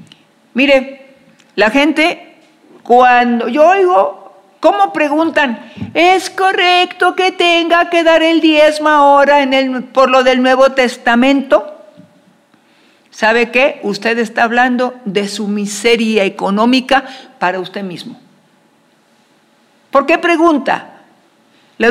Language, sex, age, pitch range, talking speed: Spanish, female, 50-69, 230-300 Hz, 110 wpm